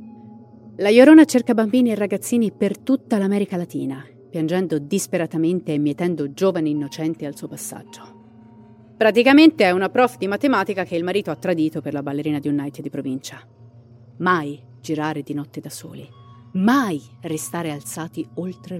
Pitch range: 140-205 Hz